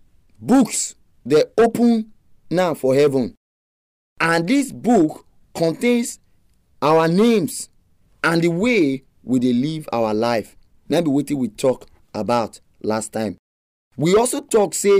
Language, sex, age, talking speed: English, male, 30-49, 120 wpm